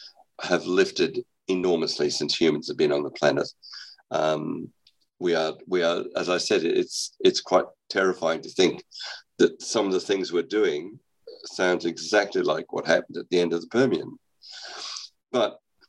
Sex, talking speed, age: male, 160 wpm, 50-69